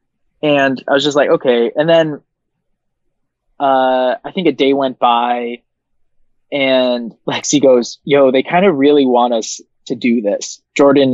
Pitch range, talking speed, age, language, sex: 120-145 Hz, 155 wpm, 20-39, English, male